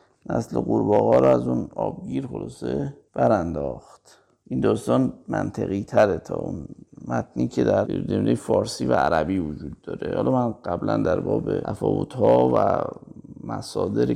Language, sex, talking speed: Persian, male, 130 wpm